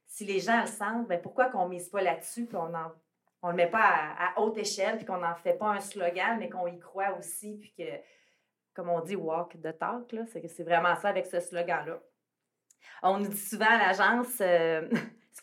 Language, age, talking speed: French, 30-49, 220 wpm